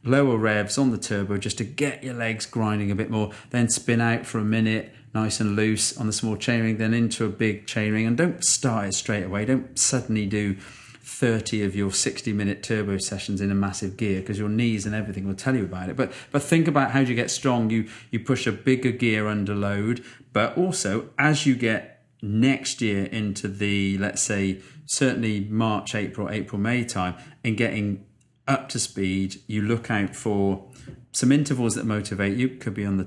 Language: English